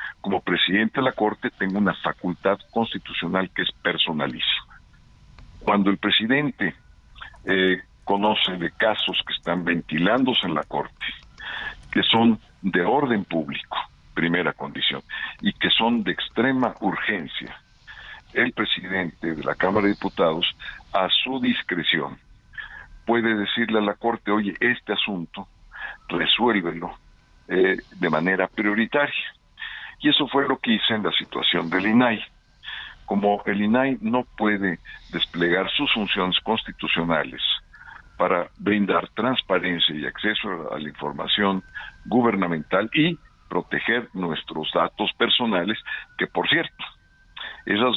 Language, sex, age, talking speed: Spanish, male, 50-69, 125 wpm